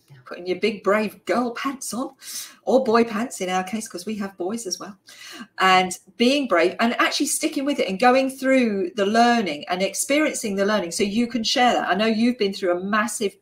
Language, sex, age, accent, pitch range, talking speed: English, female, 40-59, British, 175-225 Hz, 215 wpm